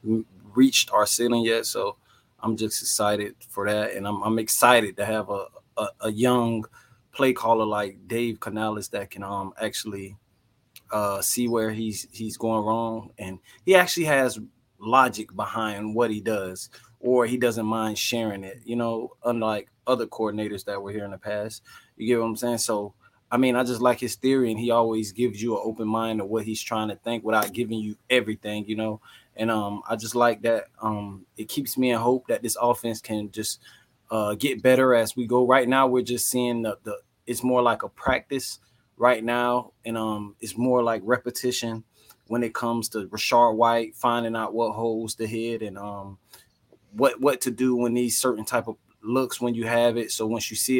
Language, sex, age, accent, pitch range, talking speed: English, male, 20-39, American, 110-120 Hz, 200 wpm